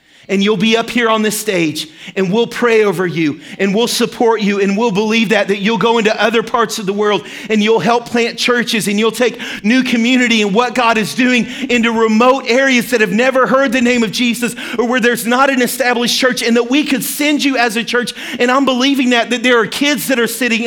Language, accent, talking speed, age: English, American, 240 wpm, 40-59